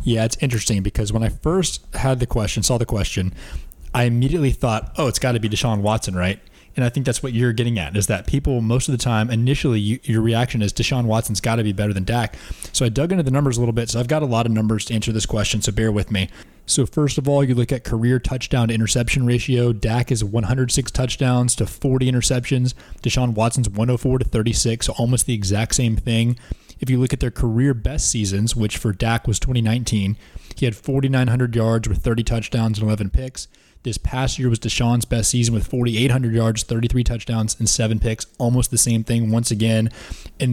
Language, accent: English, American